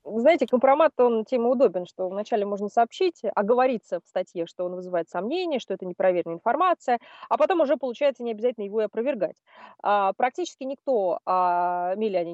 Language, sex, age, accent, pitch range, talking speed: Russian, female, 20-39, native, 180-245 Hz, 170 wpm